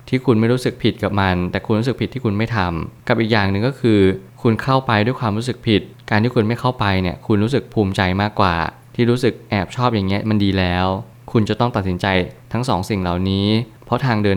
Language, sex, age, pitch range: Thai, male, 20-39, 95-120 Hz